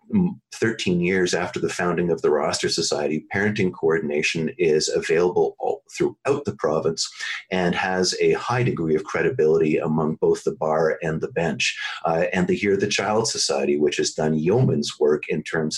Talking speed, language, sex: 170 wpm, English, male